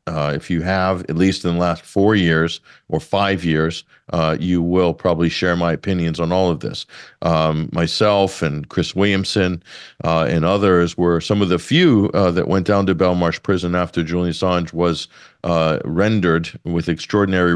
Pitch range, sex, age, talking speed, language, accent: 85-95 Hz, male, 50-69, 180 wpm, English, American